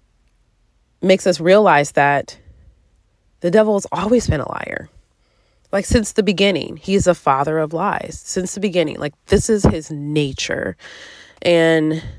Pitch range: 145-180 Hz